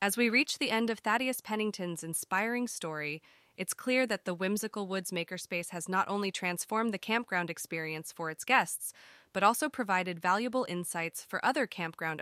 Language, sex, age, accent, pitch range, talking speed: English, female, 20-39, American, 175-220 Hz, 170 wpm